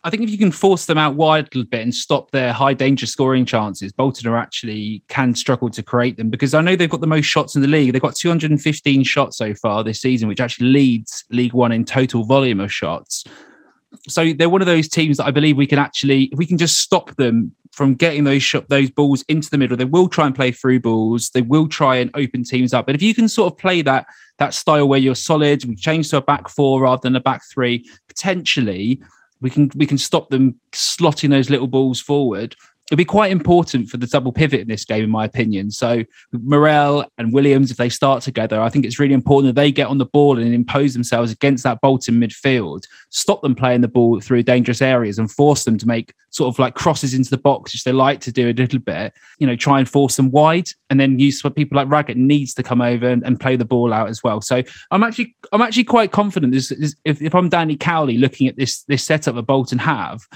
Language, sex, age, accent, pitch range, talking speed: English, male, 20-39, British, 125-150 Hz, 245 wpm